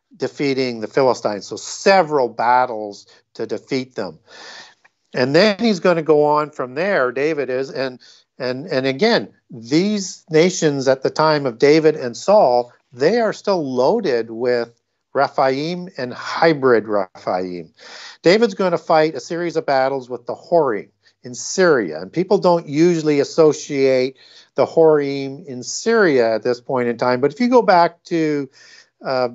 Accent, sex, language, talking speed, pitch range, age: American, male, English, 155 wpm, 125-160 Hz, 50-69